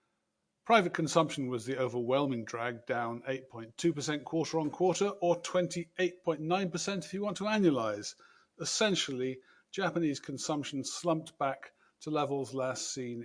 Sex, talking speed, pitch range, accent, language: male, 115 wpm, 130-170 Hz, British, English